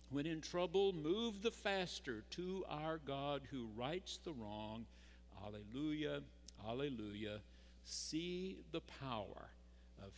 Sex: male